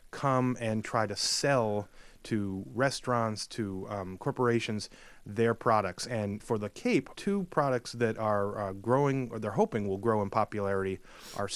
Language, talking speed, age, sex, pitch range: English, 155 wpm, 30-49, male, 105-125 Hz